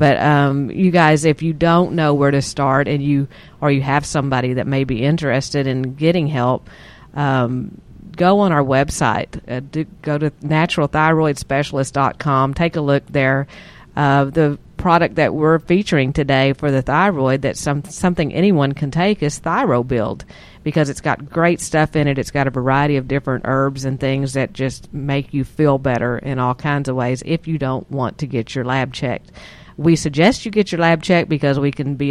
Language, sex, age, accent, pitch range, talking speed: English, female, 50-69, American, 135-155 Hz, 190 wpm